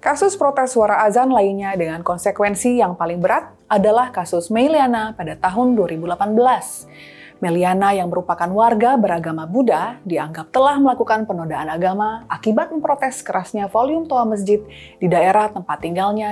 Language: Indonesian